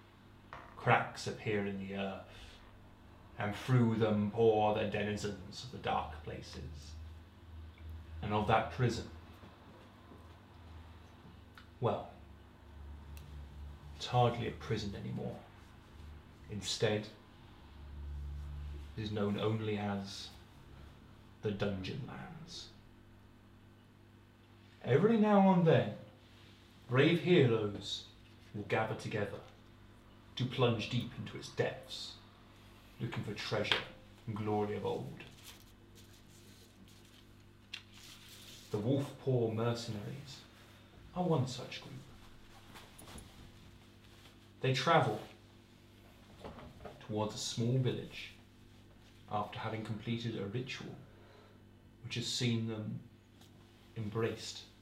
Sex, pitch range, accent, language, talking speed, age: male, 100-115 Hz, British, English, 85 wpm, 30-49